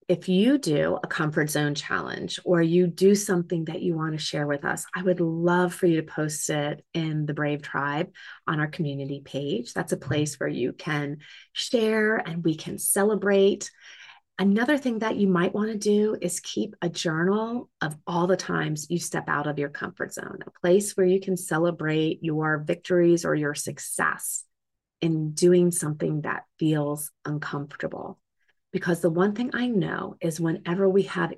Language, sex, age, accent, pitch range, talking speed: English, female, 30-49, American, 155-185 Hz, 180 wpm